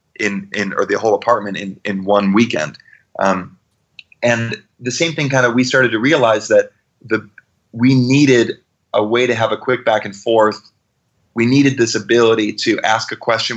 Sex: male